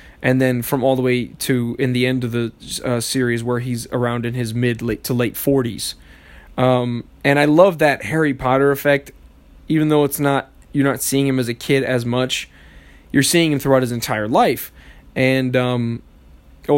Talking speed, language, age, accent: 190 wpm, English, 20-39, American